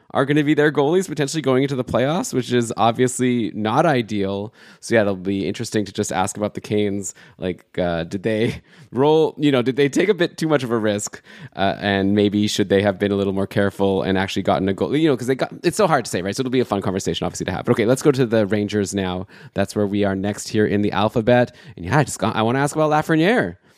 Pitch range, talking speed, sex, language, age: 100-130 Hz, 270 wpm, male, English, 20-39